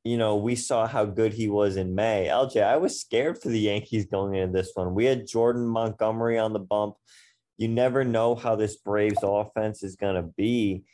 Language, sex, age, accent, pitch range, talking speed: English, male, 20-39, American, 95-110 Hz, 215 wpm